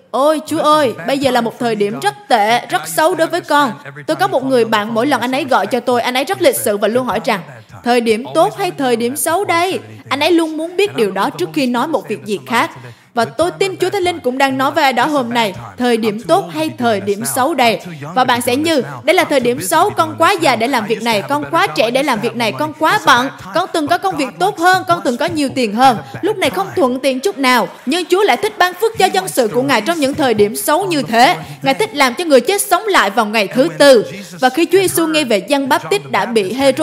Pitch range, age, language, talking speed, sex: 240-340 Hz, 20-39, Vietnamese, 275 wpm, female